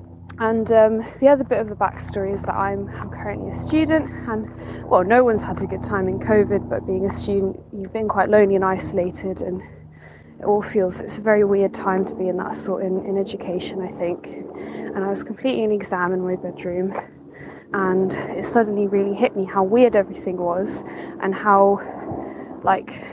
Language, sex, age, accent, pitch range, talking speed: English, female, 20-39, British, 195-265 Hz, 195 wpm